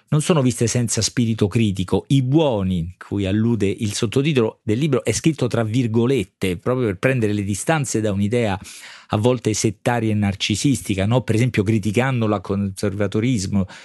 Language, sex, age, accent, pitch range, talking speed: Italian, male, 40-59, native, 95-120 Hz, 155 wpm